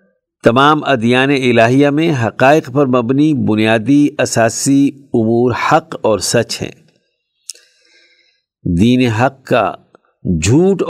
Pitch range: 115-155 Hz